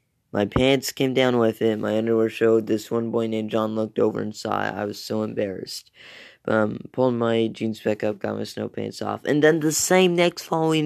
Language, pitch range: English, 110-130 Hz